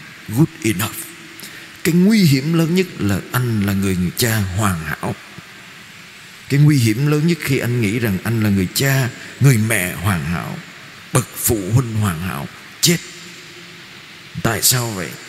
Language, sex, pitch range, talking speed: Vietnamese, male, 100-140 Hz, 155 wpm